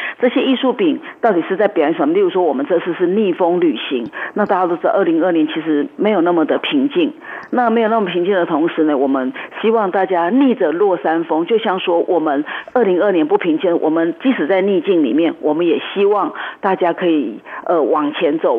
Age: 50-69